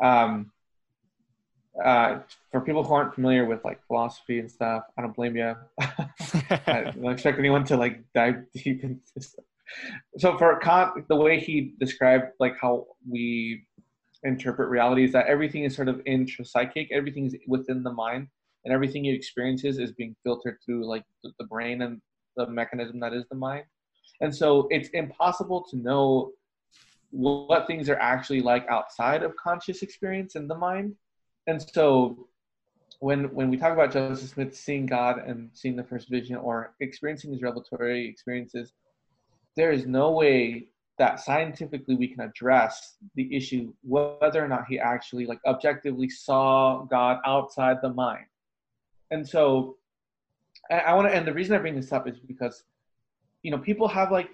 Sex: male